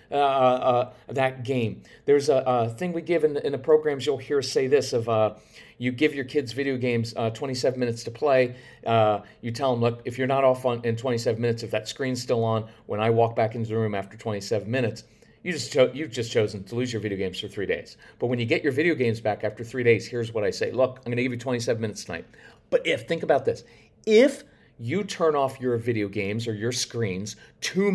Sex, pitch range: male, 115-170 Hz